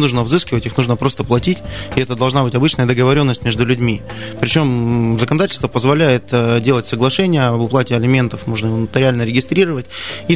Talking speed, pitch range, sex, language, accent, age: 155 wpm, 120-145 Hz, male, Russian, native, 20-39